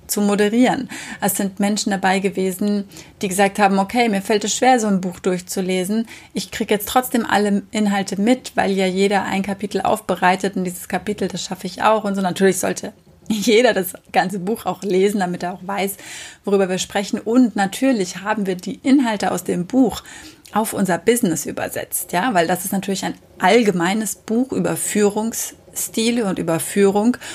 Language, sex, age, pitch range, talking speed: German, female, 30-49, 185-225 Hz, 180 wpm